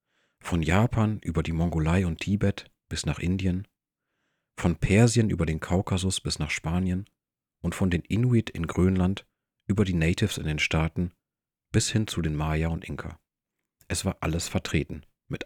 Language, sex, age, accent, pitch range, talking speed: German, male, 40-59, German, 80-100 Hz, 165 wpm